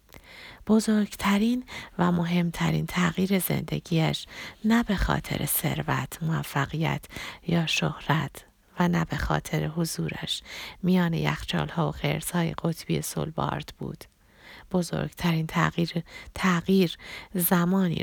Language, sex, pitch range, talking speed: Persian, female, 160-185 Hz, 90 wpm